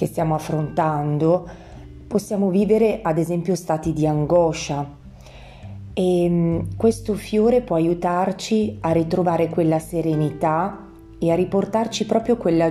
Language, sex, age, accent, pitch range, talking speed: Italian, female, 30-49, native, 155-190 Hz, 115 wpm